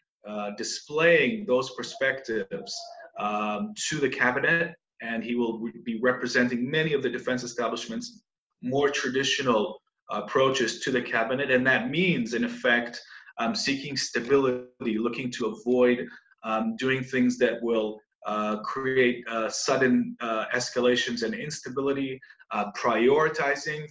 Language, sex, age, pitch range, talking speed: English, male, 30-49, 120-150 Hz, 130 wpm